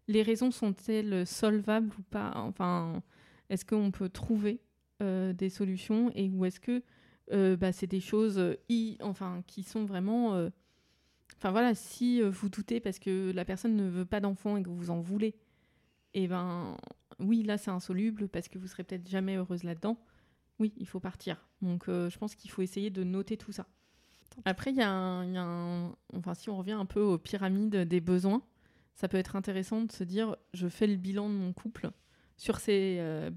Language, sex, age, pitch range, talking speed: French, female, 20-39, 180-210 Hz, 200 wpm